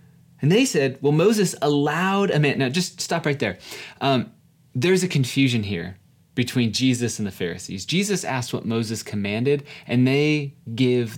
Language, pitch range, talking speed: English, 130-160 Hz, 165 wpm